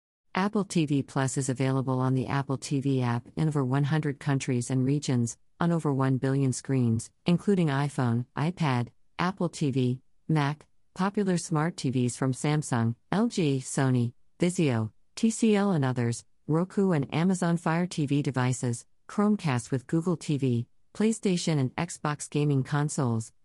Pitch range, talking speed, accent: 130-170 Hz, 135 wpm, American